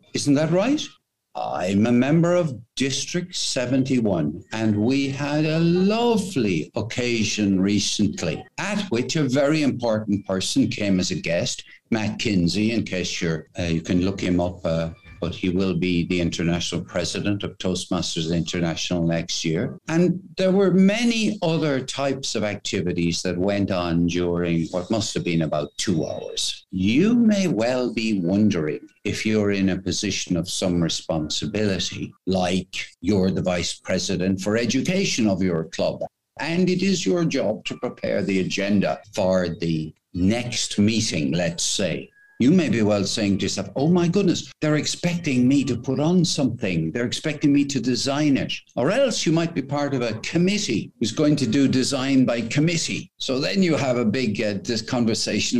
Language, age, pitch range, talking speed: English, 60-79, 95-150 Hz, 165 wpm